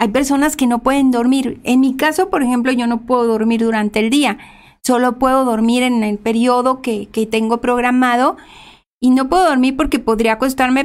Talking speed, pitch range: 195 wpm, 230-280 Hz